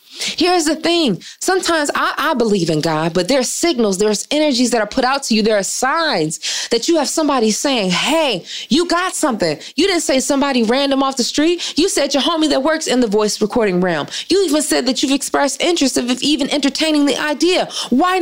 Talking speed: 215 wpm